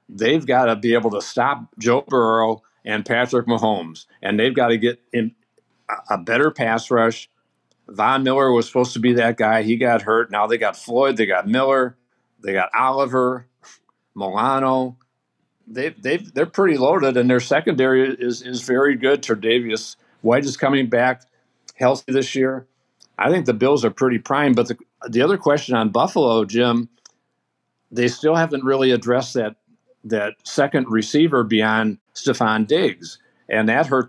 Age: 50-69